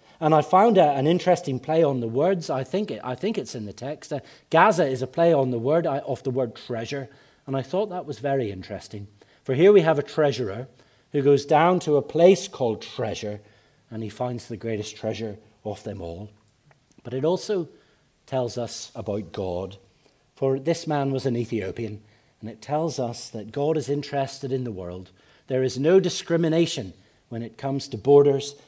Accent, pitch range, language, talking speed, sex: British, 110-155 Hz, English, 190 wpm, male